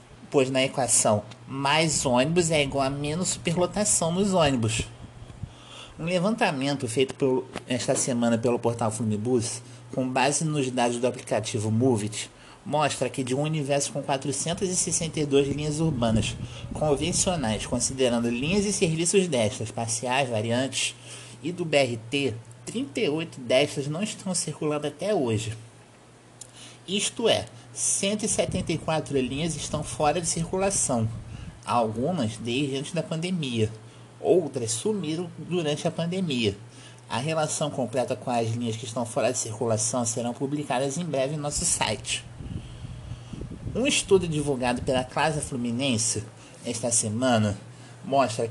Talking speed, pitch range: 120 wpm, 120-155 Hz